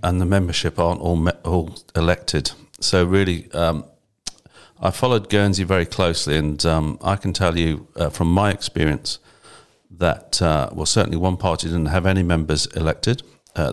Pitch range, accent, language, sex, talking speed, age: 85-100 Hz, British, English, male, 165 wpm, 50-69